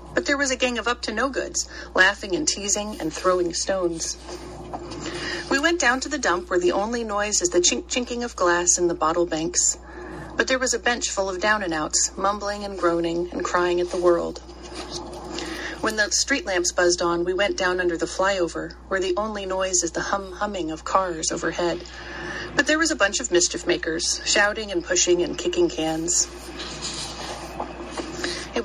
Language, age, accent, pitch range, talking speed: English, 30-49, American, 175-240 Hz, 175 wpm